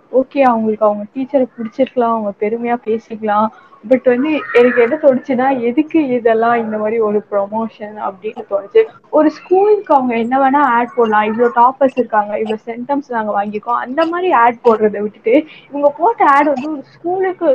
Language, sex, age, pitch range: Tamil, female, 20-39, 220-270 Hz